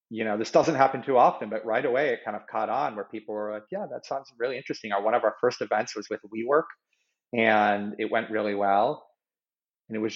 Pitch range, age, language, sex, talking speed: 105-120 Hz, 40-59, English, male, 240 wpm